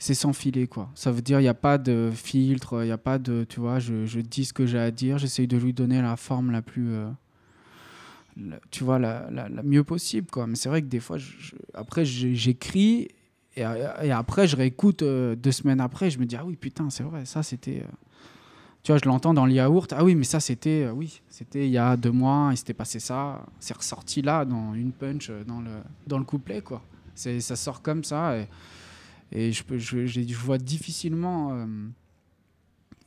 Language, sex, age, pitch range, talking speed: French, male, 20-39, 115-140 Hz, 225 wpm